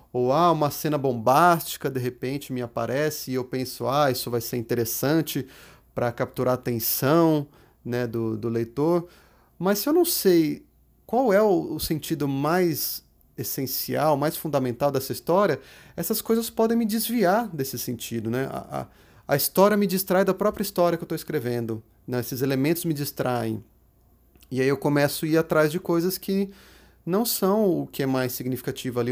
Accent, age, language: Brazilian, 30-49, Portuguese